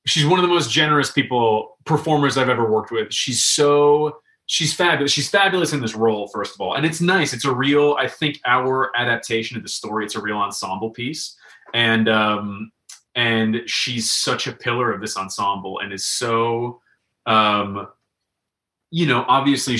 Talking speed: 180 wpm